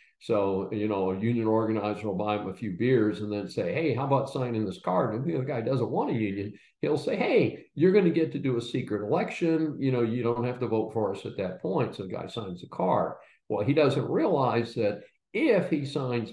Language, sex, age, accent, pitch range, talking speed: English, male, 50-69, American, 110-145 Hz, 245 wpm